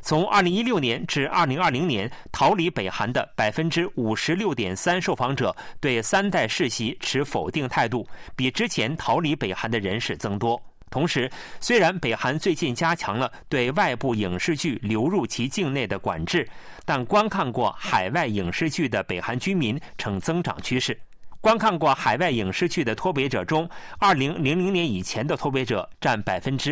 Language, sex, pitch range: Chinese, male, 115-175 Hz